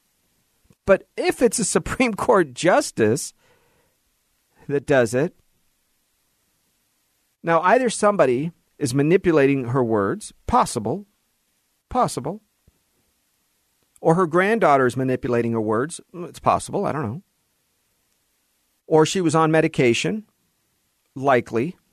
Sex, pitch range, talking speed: male, 140-185 Hz, 100 wpm